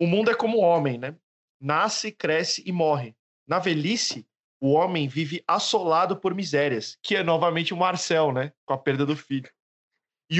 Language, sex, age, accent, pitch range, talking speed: Portuguese, male, 20-39, Brazilian, 145-185 Hz, 180 wpm